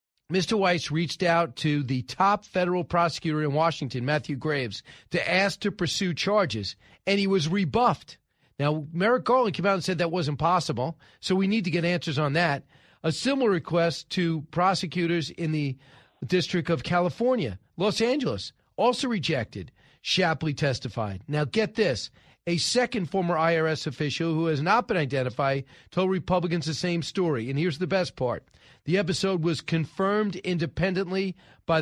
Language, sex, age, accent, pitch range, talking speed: English, male, 40-59, American, 150-190 Hz, 160 wpm